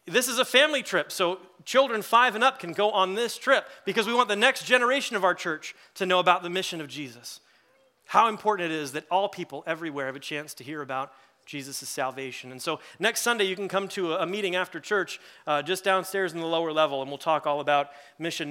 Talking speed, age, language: 235 wpm, 30-49, English